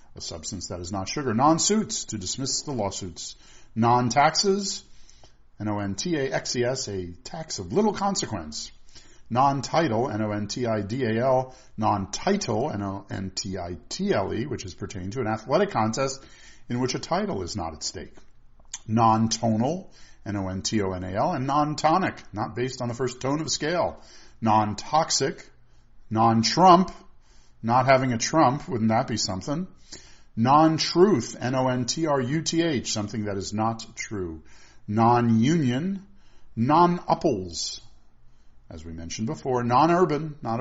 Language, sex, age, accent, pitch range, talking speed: English, male, 50-69, American, 105-140 Hz, 110 wpm